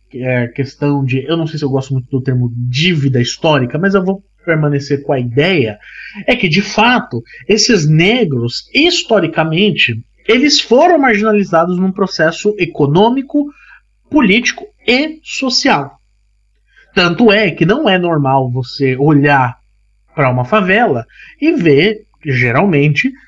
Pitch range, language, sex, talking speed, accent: 135-215 Hz, Portuguese, male, 130 wpm, Brazilian